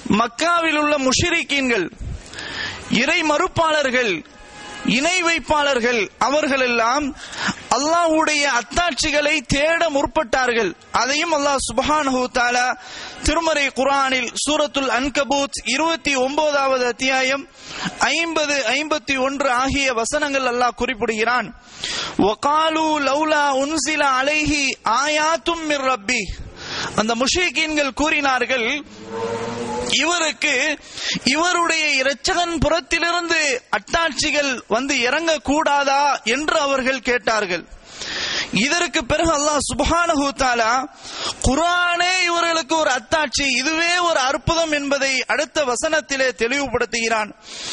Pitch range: 260-315 Hz